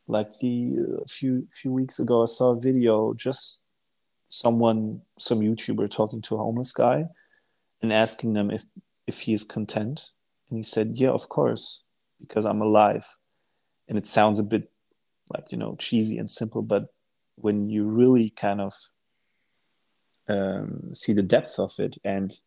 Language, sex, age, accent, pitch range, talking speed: English, male, 30-49, German, 105-125 Hz, 165 wpm